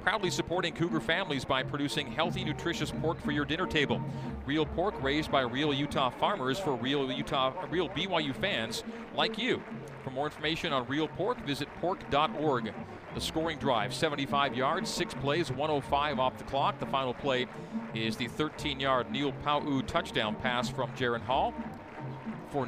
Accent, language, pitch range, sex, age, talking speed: American, English, 130-160 Hz, male, 40-59, 160 wpm